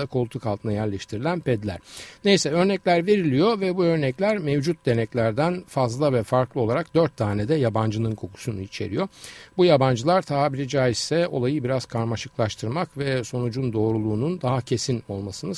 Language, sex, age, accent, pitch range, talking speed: Turkish, male, 60-79, native, 110-150 Hz, 135 wpm